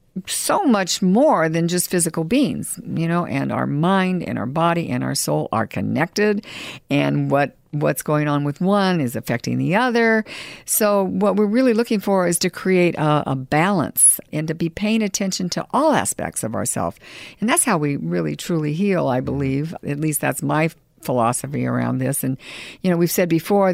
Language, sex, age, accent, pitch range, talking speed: English, female, 60-79, American, 130-185 Hz, 190 wpm